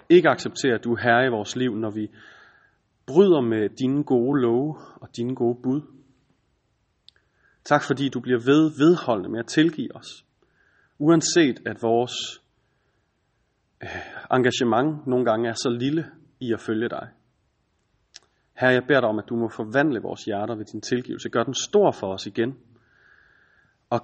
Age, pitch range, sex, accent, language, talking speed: 30-49, 115-135 Hz, male, native, Danish, 160 wpm